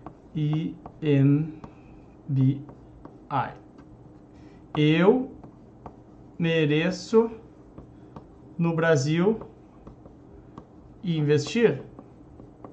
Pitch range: 150-200 Hz